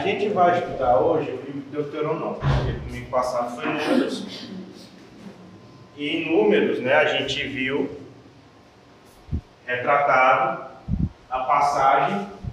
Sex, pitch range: male, 140-180 Hz